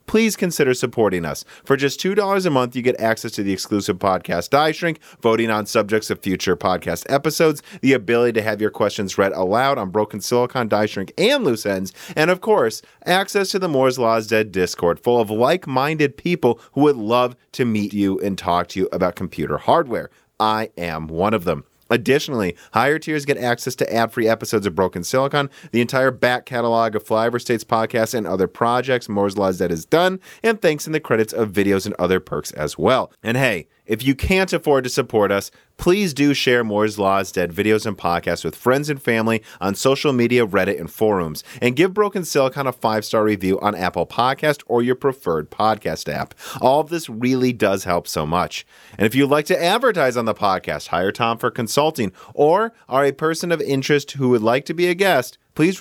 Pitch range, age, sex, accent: 105-140 Hz, 30-49, male, American